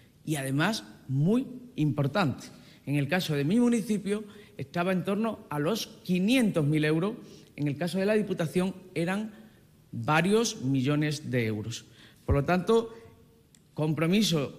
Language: Spanish